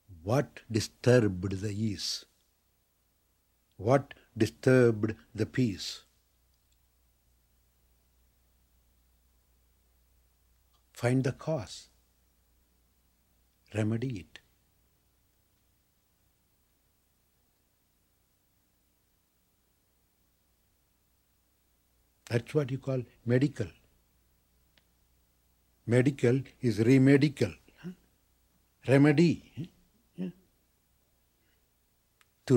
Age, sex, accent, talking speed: 60-79, male, Indian, 45 wpm